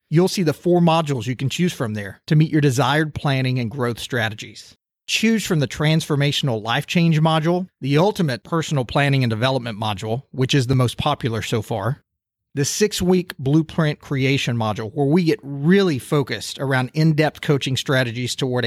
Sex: male